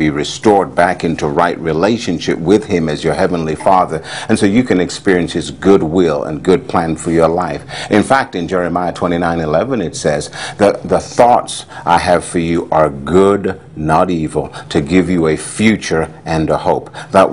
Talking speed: 185 wpm